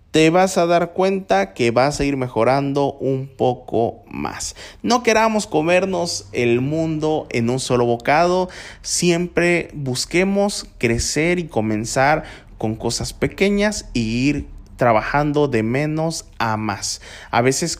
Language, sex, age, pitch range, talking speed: Spanish, male, 20-39, 115-170 Hz, 130 wpm